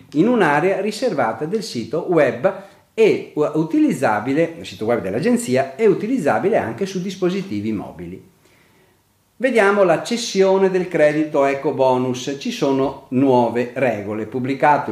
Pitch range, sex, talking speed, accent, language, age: 125-190 Hz, male, 120 wpm, native, Italian, 40-59